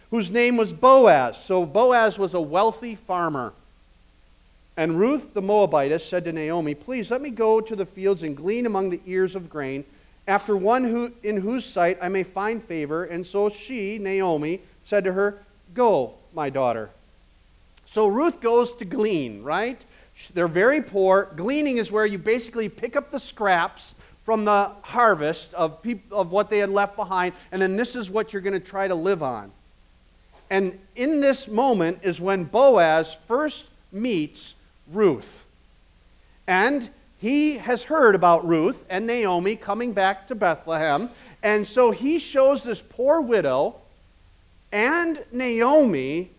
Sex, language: male, English